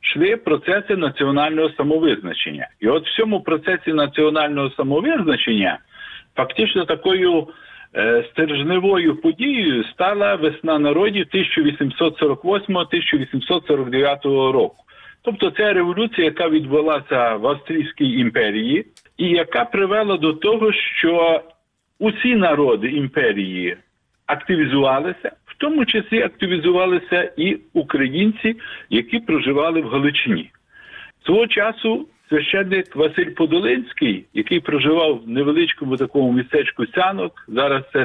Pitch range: 145-225 Hz